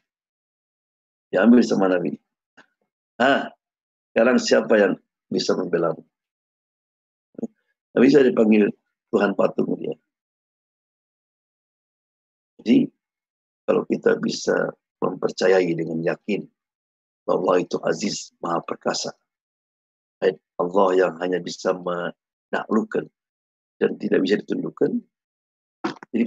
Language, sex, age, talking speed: Indonesian, male, 50-69, 90 wpm